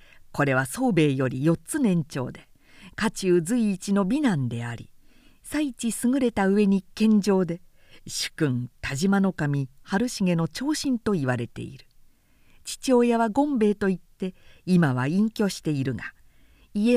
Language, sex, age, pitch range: Japanese, female, 50-69, 150-245 Hz